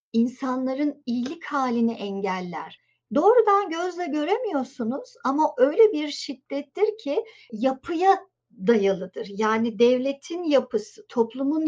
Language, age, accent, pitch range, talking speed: Turkish, 50-69, native, 230-300 Hz, 90 wpm